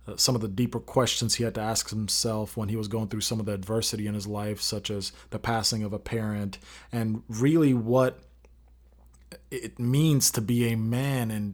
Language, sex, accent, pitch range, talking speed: English, male, American, 100-120 Hz, 205 wpm